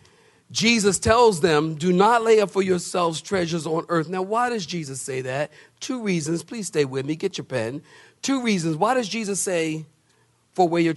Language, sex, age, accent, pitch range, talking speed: English, male, 50-69, American, 150-210 Hz, 195 wpm